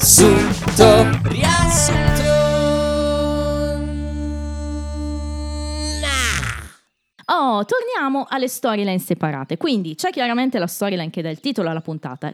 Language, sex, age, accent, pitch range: Italian, female, 20-39, native, 150-205 Hz